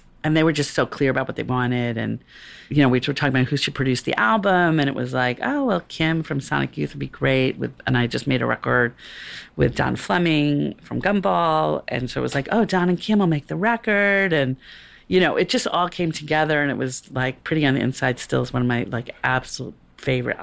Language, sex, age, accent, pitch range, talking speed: English, female, 40-59, American, 120-150 Hz, 245 wpm